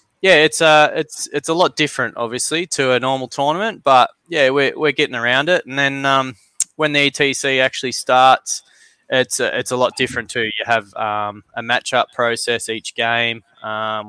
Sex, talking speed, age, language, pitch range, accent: male, 195 wpm, 20-39, English, 110-130 Hz, Australian